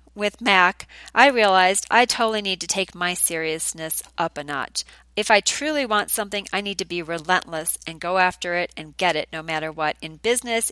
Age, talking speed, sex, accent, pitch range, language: 40-59, 200 wpm, female, American, 170-215 Hz, English